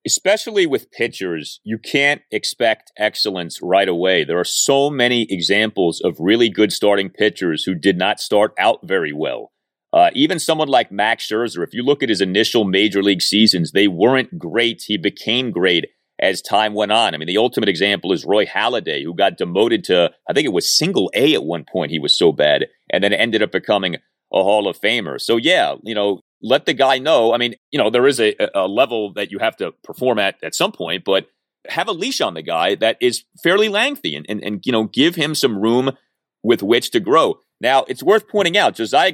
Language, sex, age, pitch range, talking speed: English, male, 30-49, 105-155 Hz, 215 wpm